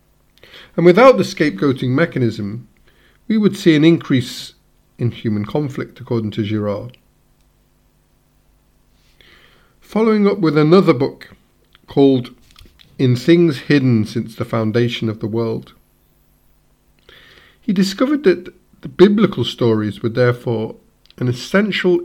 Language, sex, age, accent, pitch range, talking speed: English, male, 50-69, British, 115-170 Hz, 110 wpm